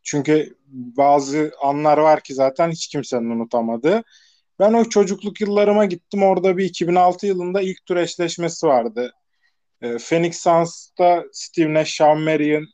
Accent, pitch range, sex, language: native, 145-200 Hz, male, Turkish